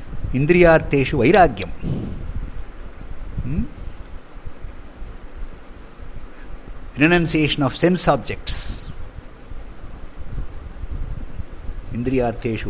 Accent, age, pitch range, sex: Indian, 50-69, 90-140 Hz, male